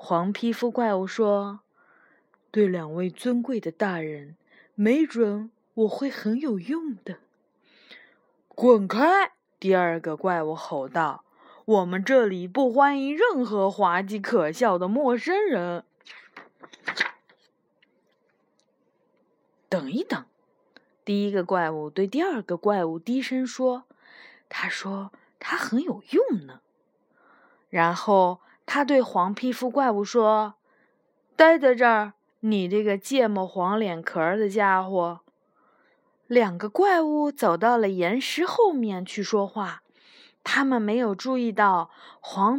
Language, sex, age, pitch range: Chinese, female, 20-39, 195-265 Hz